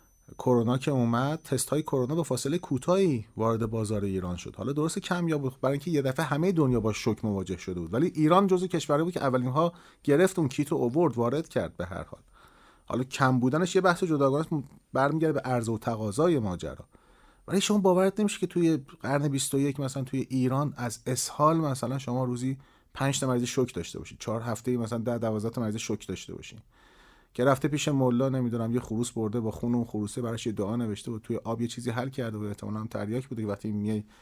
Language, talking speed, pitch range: English, 205 wpm, 110-140 Hz